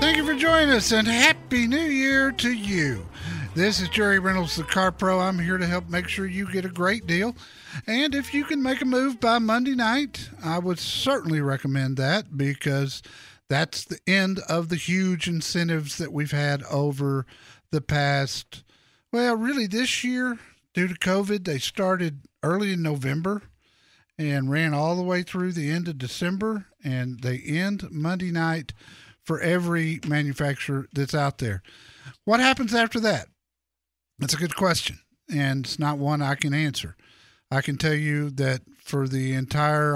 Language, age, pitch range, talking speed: English, 50-69, 140-195 Hz, 170 wpm